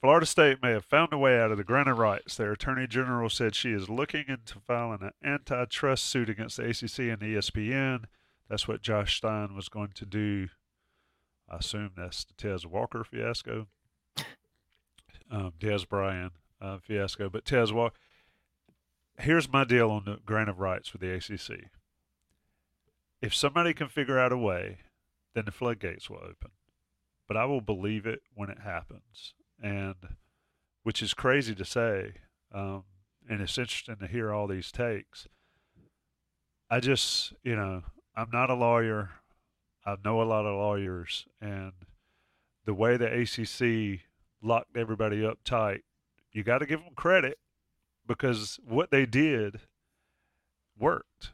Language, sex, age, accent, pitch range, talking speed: English, male, 40-59, American, 95-120 Hz, 155 wpm